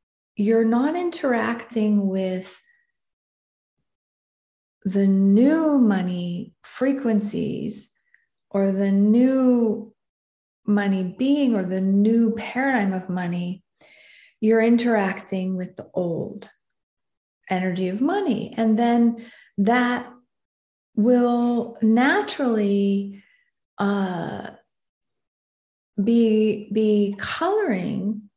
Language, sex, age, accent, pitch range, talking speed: English, female, 40-59, American, 195-240 Hz, 75 wpm